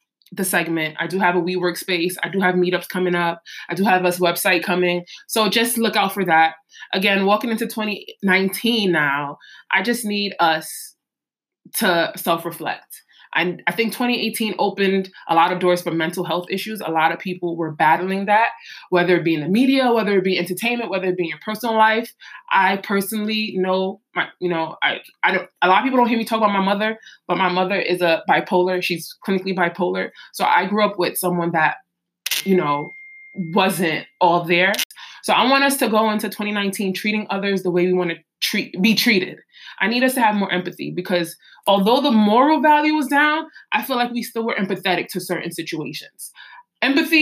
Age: 20-39